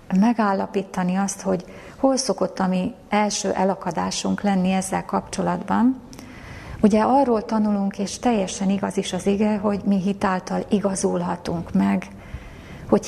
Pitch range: 185-215 Hz